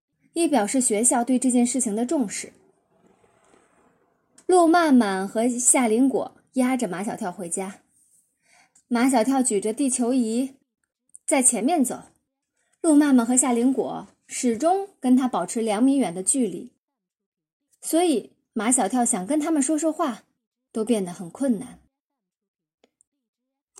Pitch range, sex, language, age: 220-285 Hz, female, Chinese, 20-39